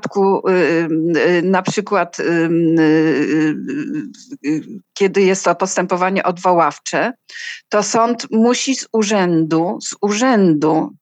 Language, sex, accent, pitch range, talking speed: Polish, female, native, 170-215 Hz, 85 wpm